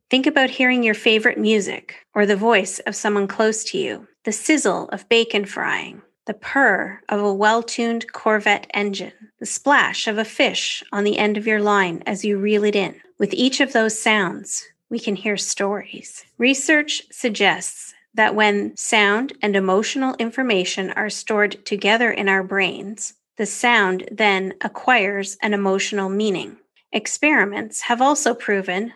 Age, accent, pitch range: 30-49, American, 200-235 Hz